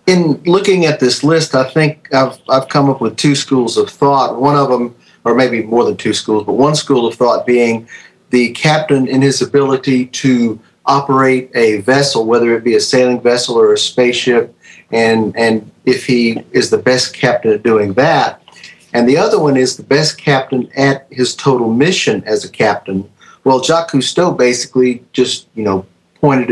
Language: English